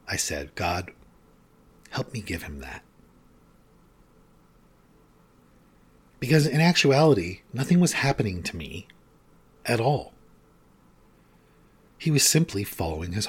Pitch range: 90-130 Hz